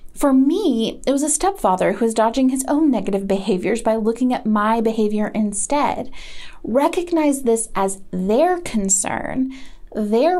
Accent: American